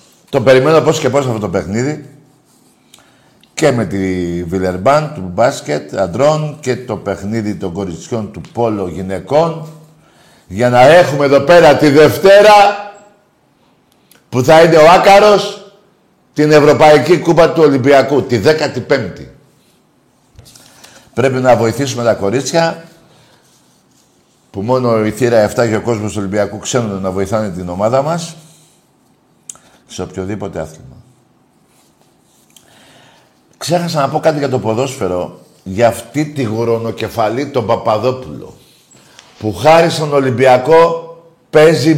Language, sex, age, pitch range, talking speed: Greek, male, 50-69, 115-155 Hz, 115 wpm